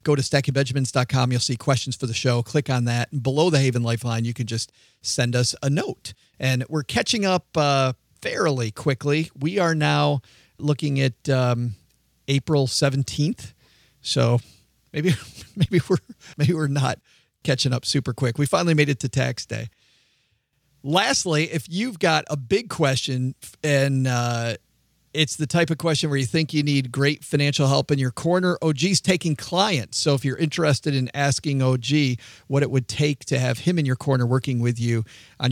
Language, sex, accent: English, male, American